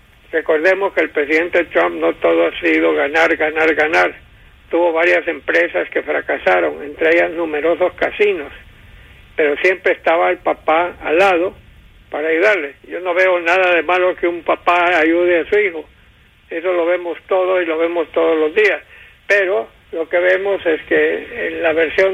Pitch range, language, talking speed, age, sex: 165-185 Hz, English, 170 wpm, 60-79, male